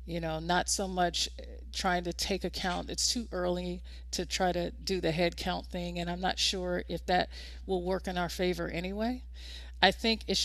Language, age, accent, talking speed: English, 50-69, American, 200 wpm